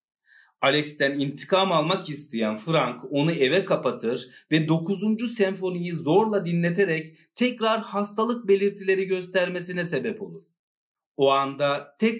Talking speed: 110 wpm